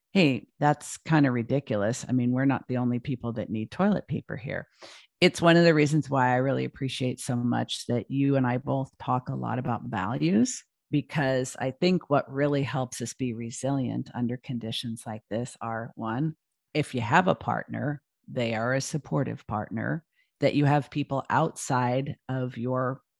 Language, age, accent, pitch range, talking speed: English, 50-69, American, 125-145 Hz, 180 wpm